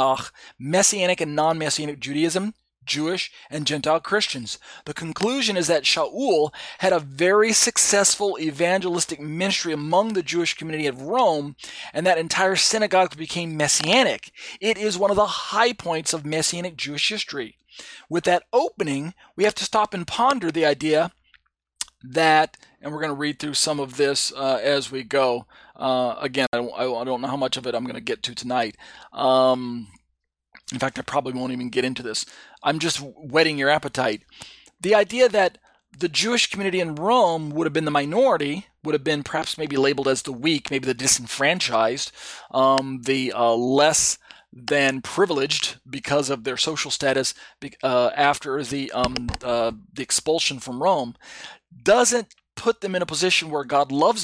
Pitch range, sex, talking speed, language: 135-180 Hz, male, 170 wpm, English